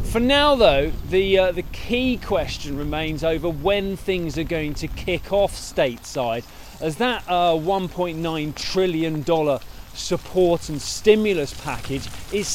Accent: British